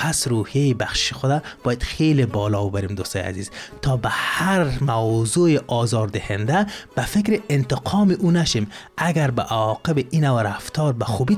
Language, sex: Persian, male